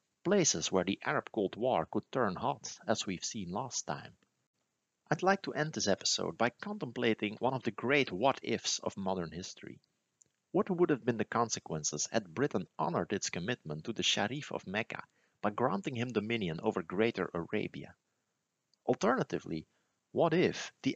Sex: male